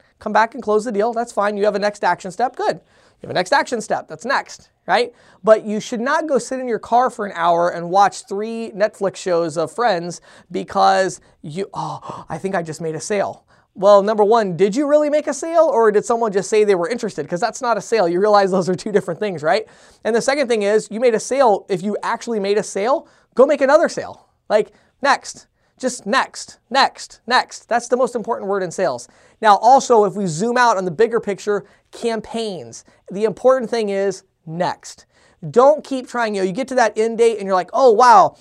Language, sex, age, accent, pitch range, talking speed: English, male, 20-39, American, 195-235 Hz, 230 wpm